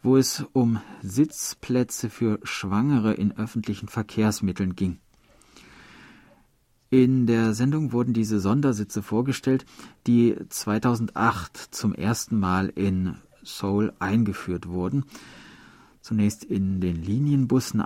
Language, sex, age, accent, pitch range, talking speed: German, male, 50-69, German, 100-125 Hz, 100 wpm